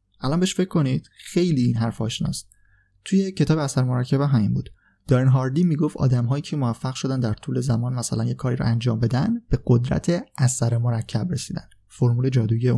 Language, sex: Persian, male